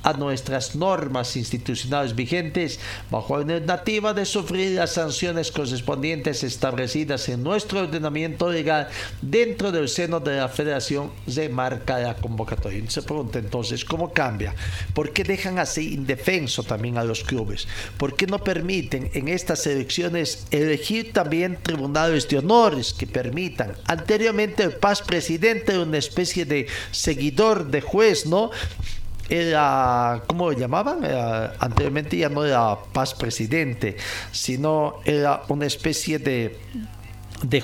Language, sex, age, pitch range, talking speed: Spanish, male, 50-69, 120-165 Hz, 135 wpm